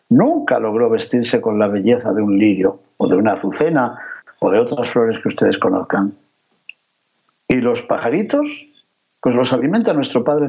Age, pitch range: 60-79, 115-185 Hz